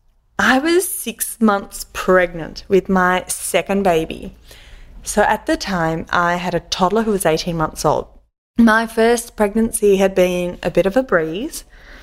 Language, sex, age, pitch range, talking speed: English, female, 20-39, 175-220 Hz, 160 wpm